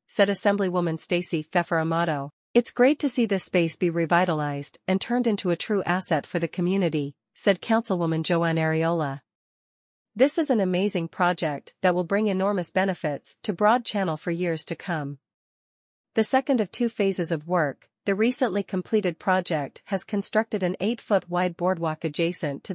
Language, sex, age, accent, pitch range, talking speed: English, female, 40-59, American, 165-200 Hz, 160 wpm